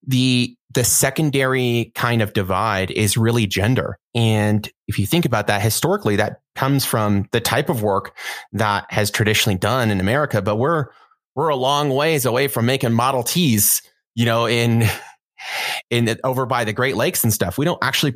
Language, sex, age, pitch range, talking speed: English, male, 30-49, 105-130 Hz, 180 wpm